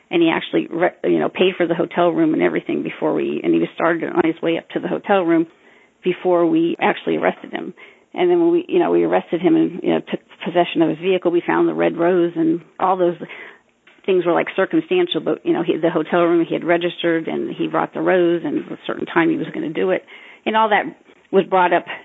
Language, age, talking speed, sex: English, 40-59, 240 wpm, female